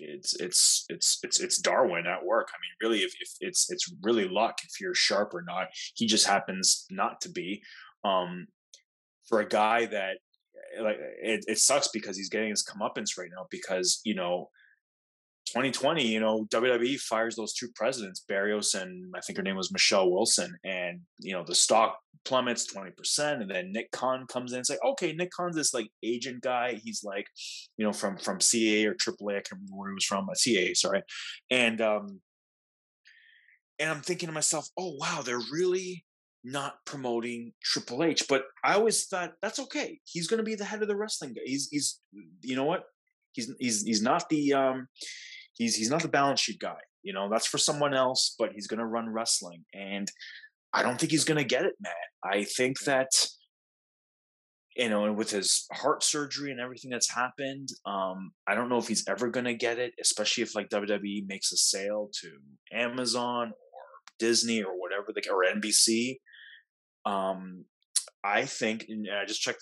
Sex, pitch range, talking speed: male, 105-150 Hz, 195 wpm